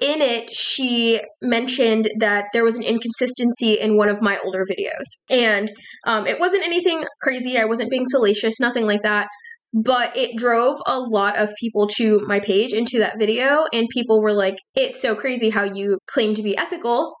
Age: 10-29